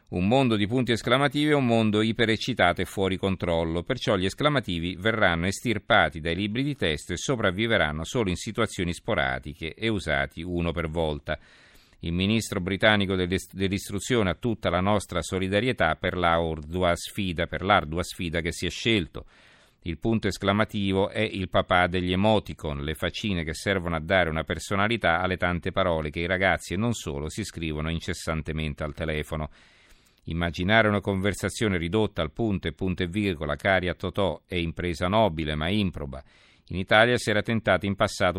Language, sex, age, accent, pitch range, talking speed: Italian, male, 50-69, native, 85-105 Hz, 165 wpm